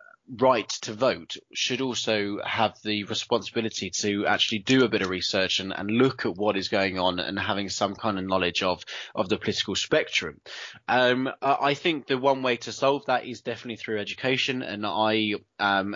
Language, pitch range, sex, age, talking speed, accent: English, 100-130 Hz, male, 20-39, 190 wpm, British